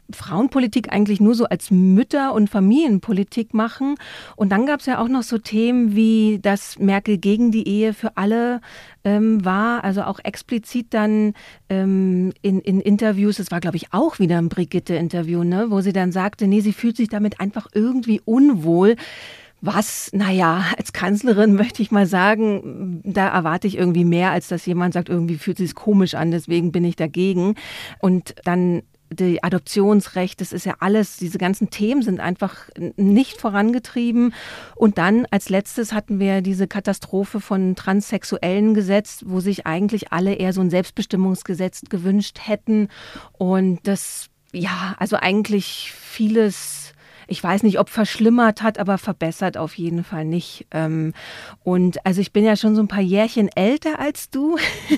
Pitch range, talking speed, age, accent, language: 185-225 Hz, 165 wpm, 40-59, German, German